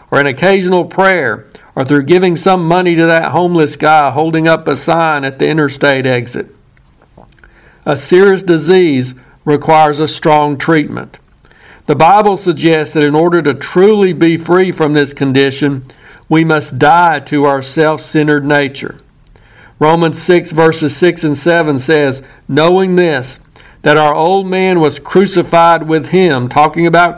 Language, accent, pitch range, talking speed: English, American, 145-175 Hz, 145 wpm